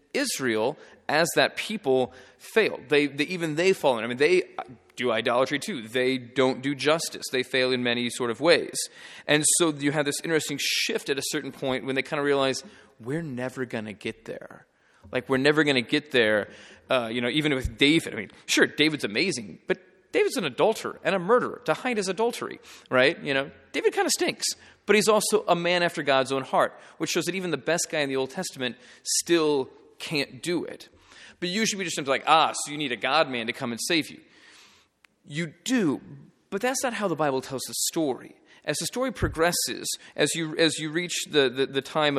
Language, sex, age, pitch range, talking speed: English, male, 30-49, 130-175 Hz, 215 wpm